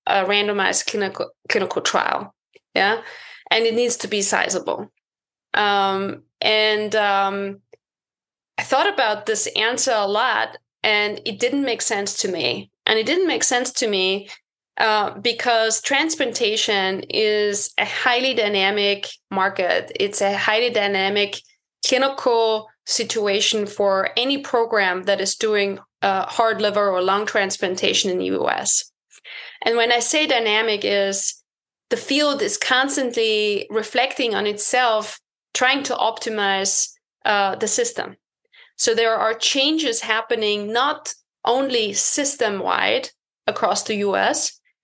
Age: 20-39